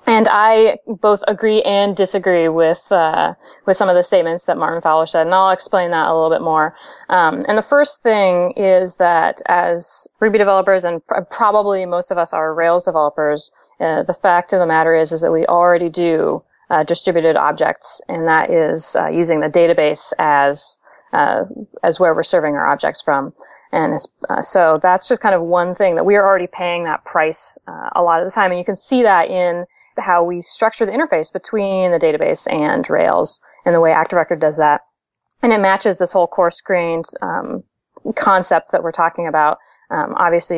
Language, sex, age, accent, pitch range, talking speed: English, female, 30-49, American, 165-195 Hz, 195 wpm